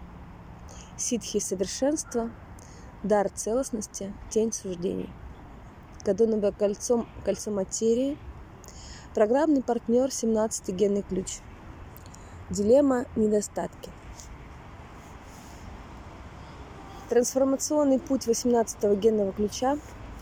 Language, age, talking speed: Russian, 20-39, 65 wpm